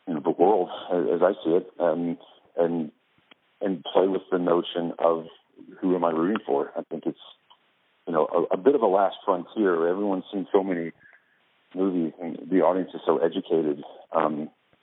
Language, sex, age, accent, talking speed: English, male, 50-69, American, 185 wpm